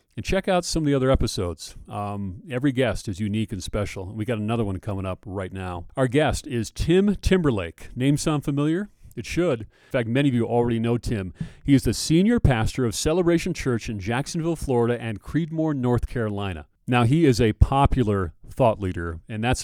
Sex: male